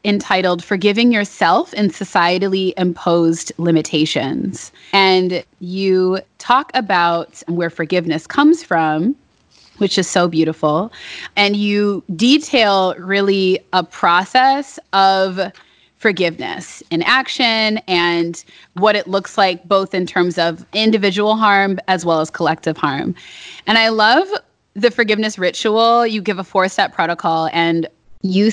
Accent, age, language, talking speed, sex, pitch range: American, 20-39, English, 120 wpm, female, 170-215 Hz